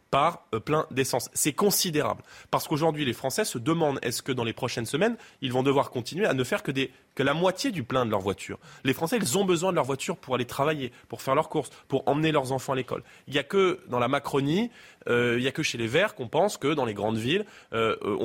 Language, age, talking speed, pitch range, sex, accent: French, 20-39, 255 wpm, 120-155 Hz, male, French